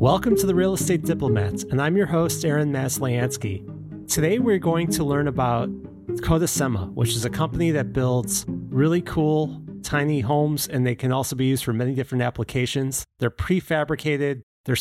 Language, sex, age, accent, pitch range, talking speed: English, male, 30-49, American, 130-160 Hz, 170 wpm